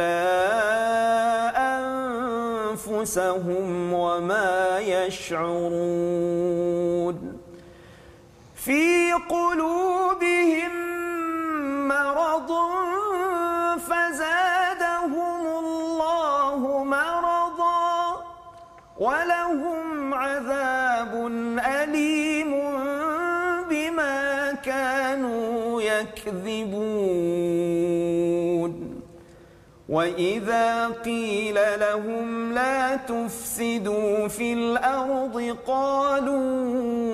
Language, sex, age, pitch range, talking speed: Malayalam, male, 40-59, 215-280 Hz, 40 wpm